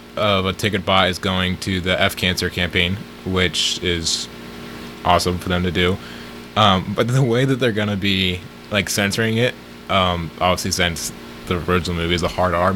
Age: 20-39